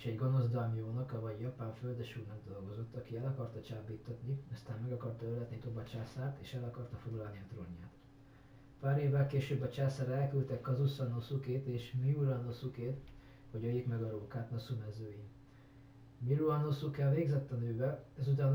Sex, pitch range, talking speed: male, 115-135 Hz, 140 wpm